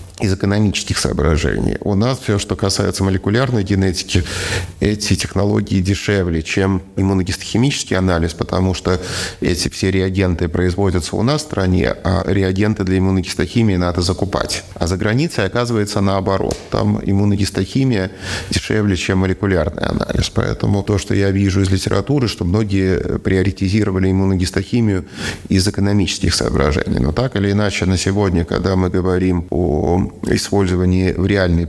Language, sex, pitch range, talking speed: Russian, male, 85-100 Hz, 135 wpm